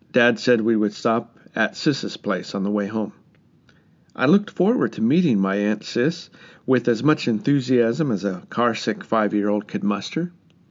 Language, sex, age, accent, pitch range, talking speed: English, male, 50-69, American, 110-130 Hz, 170 wpm